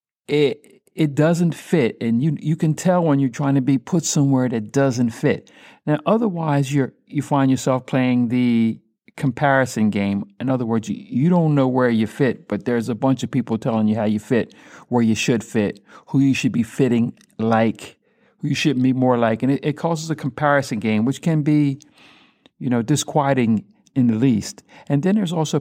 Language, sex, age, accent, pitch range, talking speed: English, male, 50-69, American, 115-145 Hz, 200 wpm